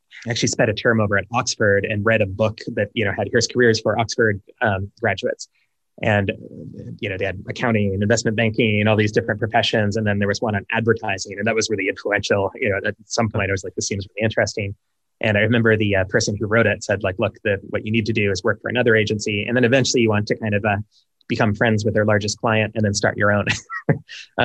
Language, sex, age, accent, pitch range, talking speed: English, male, 20-39, American, 100-115 Hz, 255 wpm